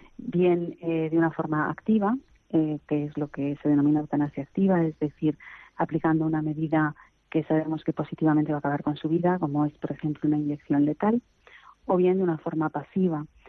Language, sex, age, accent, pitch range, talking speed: Spanish, female, 30-49, Spanish, 150-170 Hz, 190 wpm